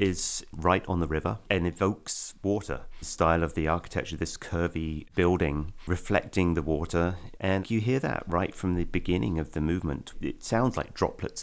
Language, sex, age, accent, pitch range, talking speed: English, male, 30-49, British, 75-90 Hz, 175 wpm